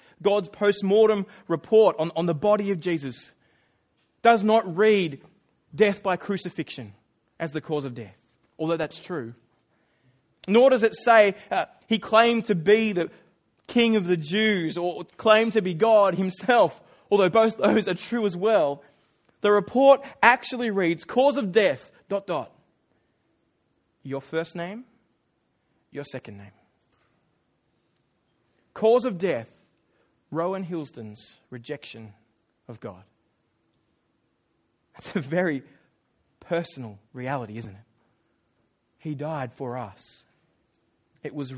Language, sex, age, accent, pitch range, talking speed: English, male, 20-39, Australian, 145-215 Hz, 125 wpm